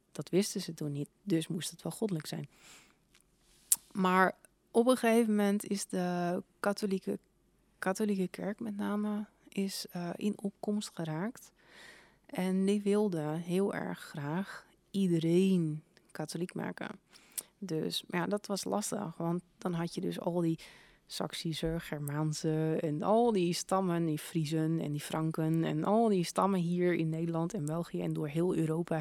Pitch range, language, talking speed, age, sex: 160-195 Hz, Dutch, 155 wpm, 30-49, female